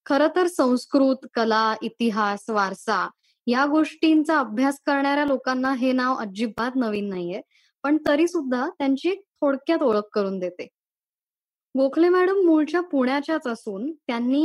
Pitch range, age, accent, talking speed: 230-290 Hz, 20-39, native, 120 wpm